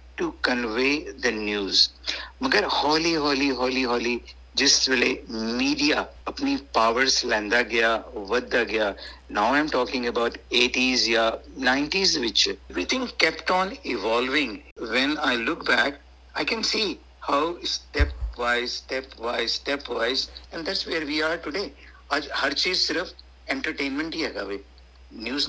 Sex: male